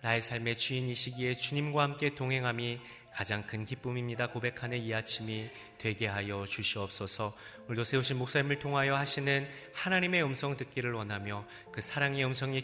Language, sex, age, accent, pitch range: Korean, male, 30-49, native, 100-125 Hz